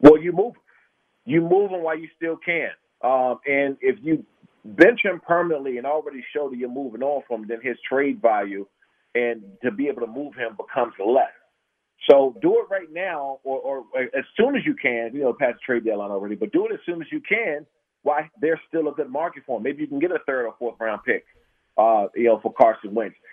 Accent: American